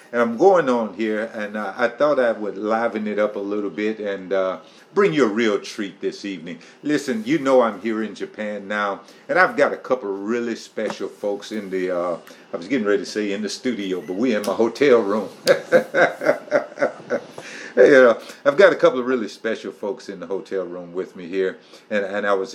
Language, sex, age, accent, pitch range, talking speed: English, male, 50-69, American, 100-120 Hz, 220 wpm